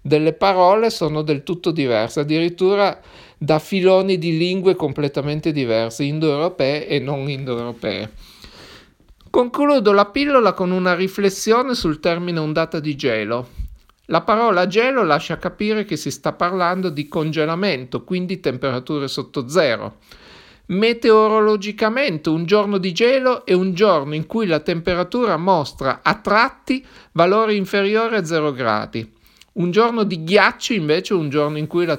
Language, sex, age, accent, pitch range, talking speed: Italian, male, 50-69, native, 150-200 Hz, 140 wpm